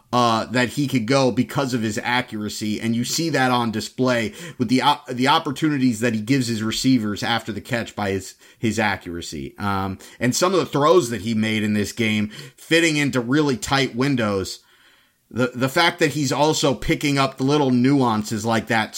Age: 30-49